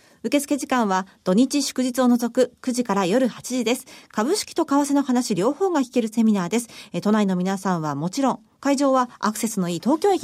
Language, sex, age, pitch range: Japanese, female, 40-59, 210-295 Hz